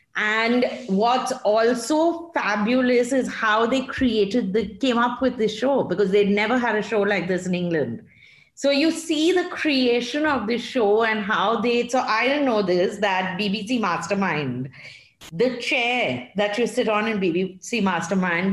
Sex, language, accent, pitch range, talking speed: female, English, Indian, 200-255 Hz, 170 wpm